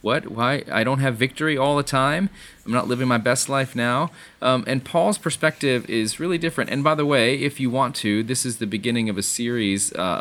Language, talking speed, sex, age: English, 230 wpm, male, 30-49